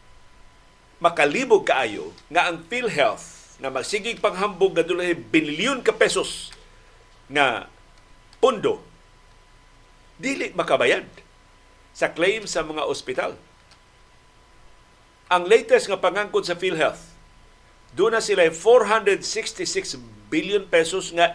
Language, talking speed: Filipino, 100 wpm